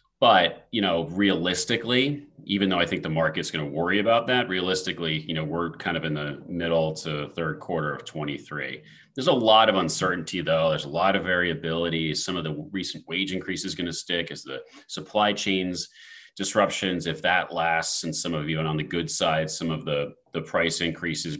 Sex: male